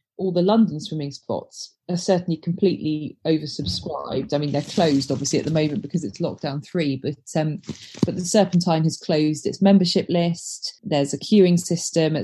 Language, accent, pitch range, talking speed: English, British, 155-195 Hz, 175 wpm